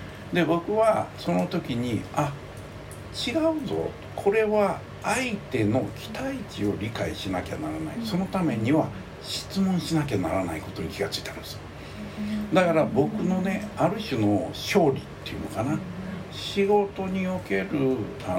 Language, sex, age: Japanese, male, 60-79